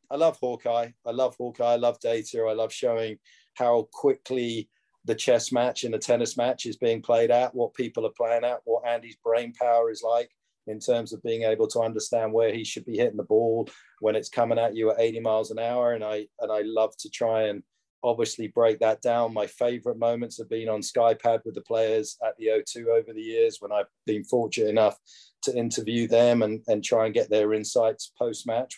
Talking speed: 215 wpm